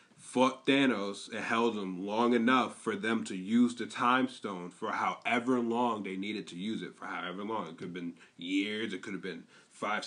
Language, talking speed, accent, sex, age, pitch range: English, 210 wpm, American, male, 20-39, 100-125 Hz